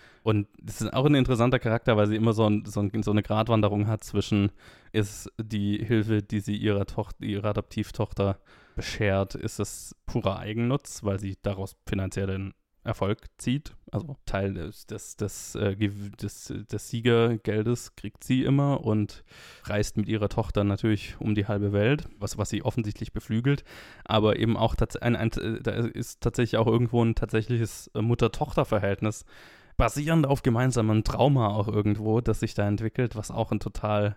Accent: German